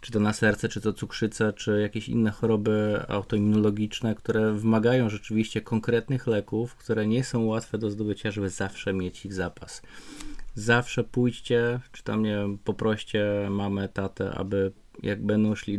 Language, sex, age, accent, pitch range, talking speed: Polish, male, 20-39, native, 105-120 Hz, 150 wpm